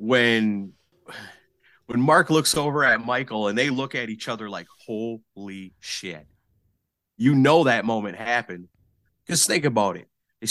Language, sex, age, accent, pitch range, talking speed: English, male, 30-49, American, 105-135 Hz, 150 wpm